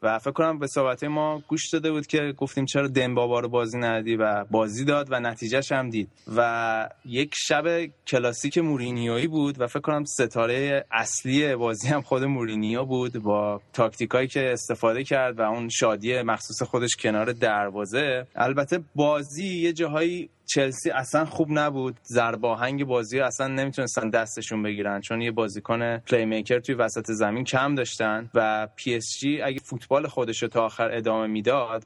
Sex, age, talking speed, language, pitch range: male, 20-39, 160 wpm, Persian, 115-140 Hz